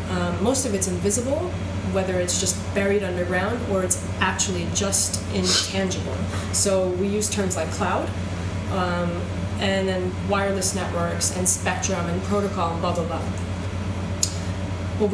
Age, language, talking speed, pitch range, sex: 20-39, English, 140 wpm, 90-95 Hz, female